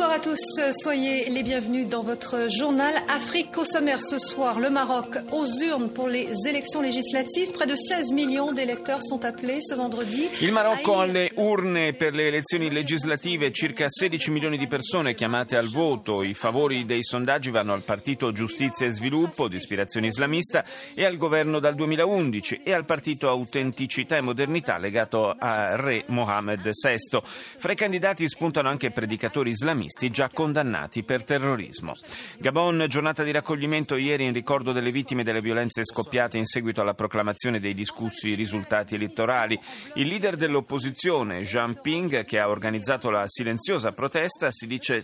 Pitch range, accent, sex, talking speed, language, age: 115-180 Hz, native, male, 115 wpm, Italian, 40-59